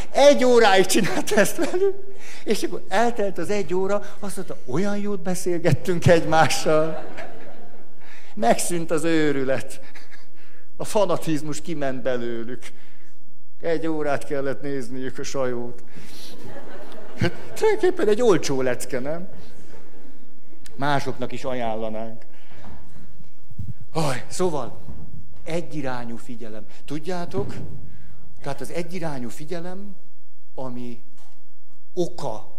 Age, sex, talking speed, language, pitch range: 60-79, male, 90 wpm, Hungarian, 115-170 Hz